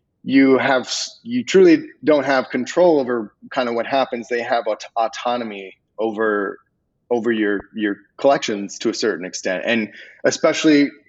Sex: male